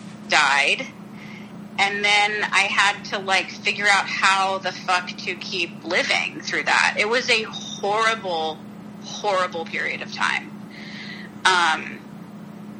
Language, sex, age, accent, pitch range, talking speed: English, female, 30-49, American, 200-235 Hz, 120 wpm